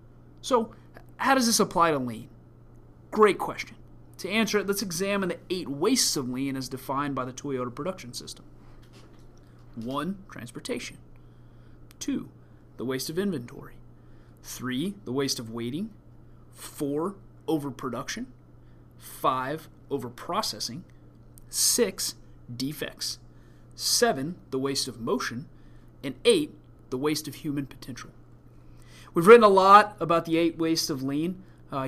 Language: English